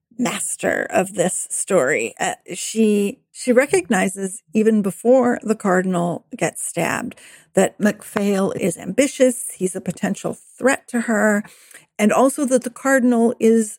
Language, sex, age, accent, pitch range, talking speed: English, female, 50-69, American, 190-240 Hz, 130 wpm